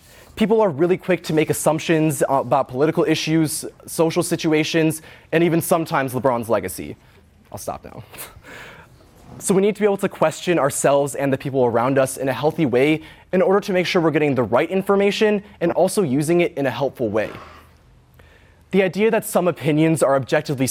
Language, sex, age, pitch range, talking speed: English, male, 20-39, 130-165 Hz, 185 wpm